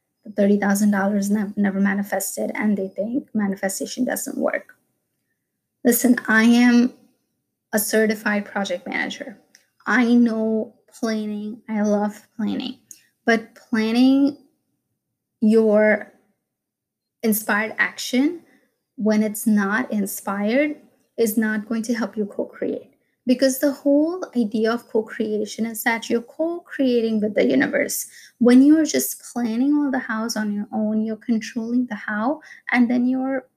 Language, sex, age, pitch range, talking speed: English, female, 20-39, 210-255 Hz, 125 wpm